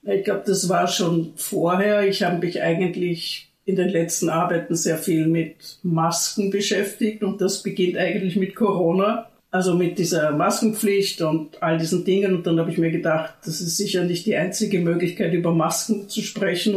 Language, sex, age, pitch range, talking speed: German, female, 60-79, 165-200 Hz, 180 wpm